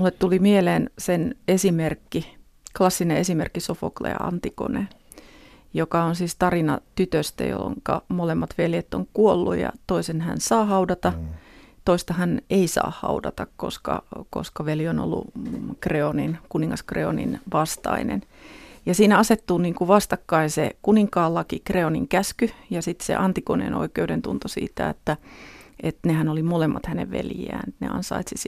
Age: 30-49